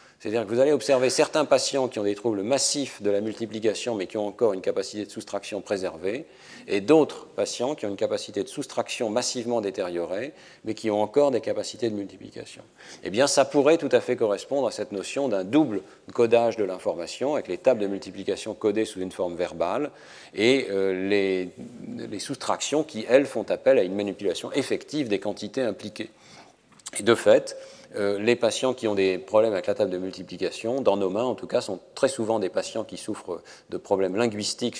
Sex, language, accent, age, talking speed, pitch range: male, French, French, 40-59, 200 wpm, 95-125 Hz